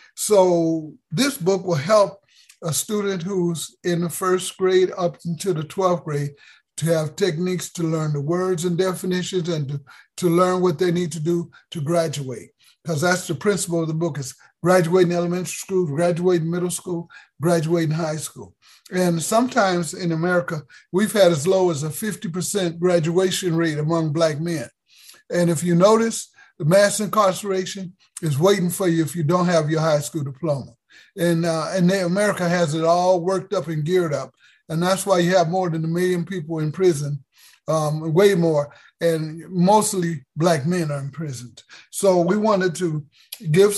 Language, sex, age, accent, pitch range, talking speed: English, male, 50-69, American, 165-190 Hz, 175 wpm